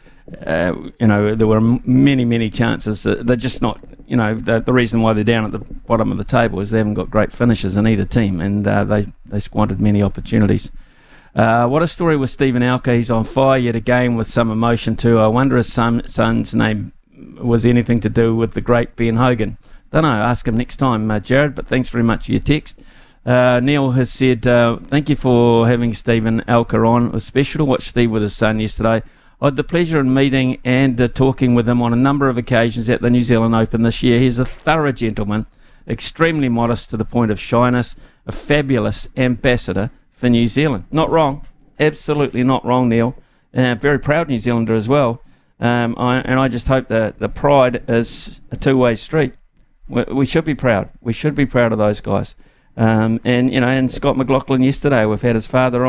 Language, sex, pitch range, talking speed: English, male, 115-130 Hz, 215 wpm